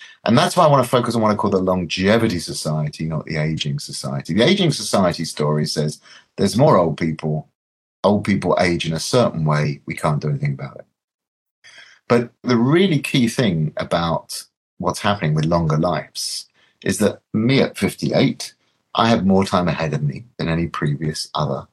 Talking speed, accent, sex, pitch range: 185 wpm, British, male, 80-115 Hz